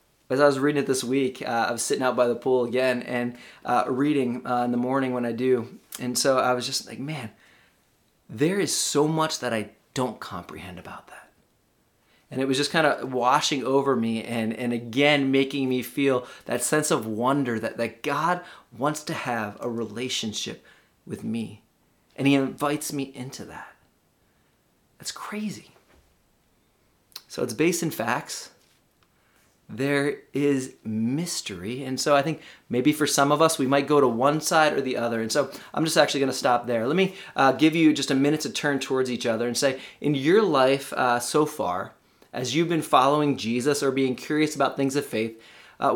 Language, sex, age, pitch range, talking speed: English, male, 30-49, 125-150 Hz, 195 wpm